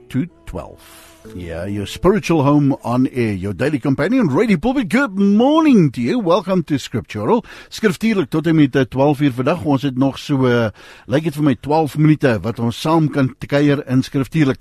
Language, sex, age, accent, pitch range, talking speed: English, male, 50-69, Dutch, 125-195 Hz, 160 wpm